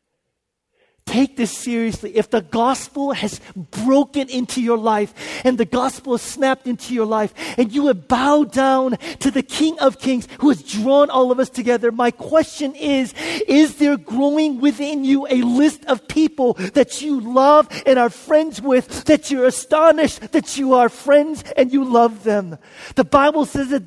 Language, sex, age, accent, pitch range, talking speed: English, male, 40-59, American, 235-280 Hz, 175 wpm